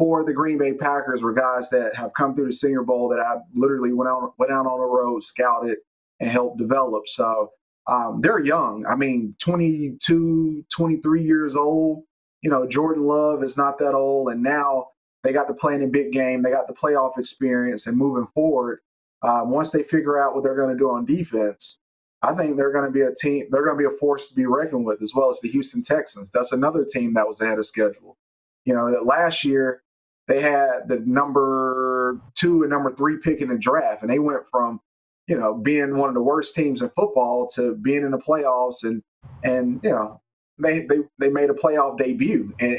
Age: 30-49